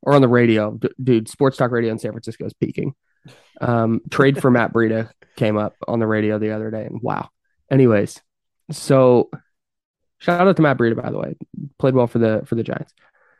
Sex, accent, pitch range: male, American, 115-145 Hz